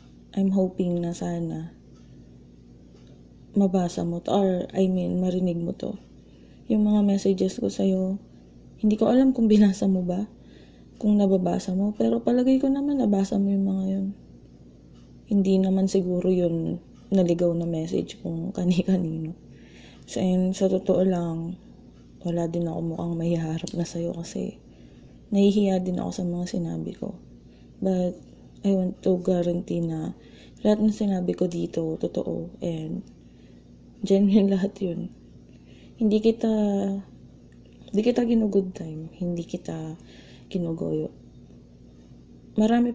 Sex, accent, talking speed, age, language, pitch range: female, native, 130 wpm, 20-39, Filipino, 125-195 Hz